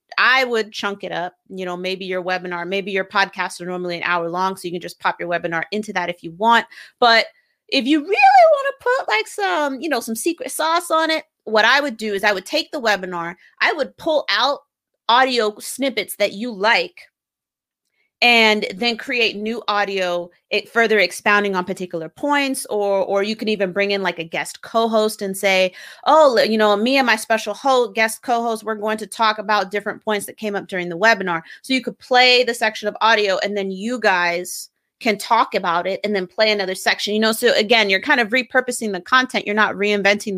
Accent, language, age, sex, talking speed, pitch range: American, English, 30-49, female, 215 wpm, 195-245 Hz